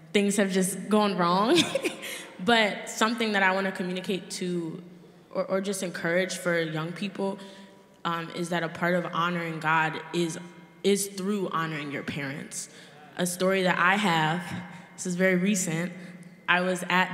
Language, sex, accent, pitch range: English, female, American, 175-200 Hz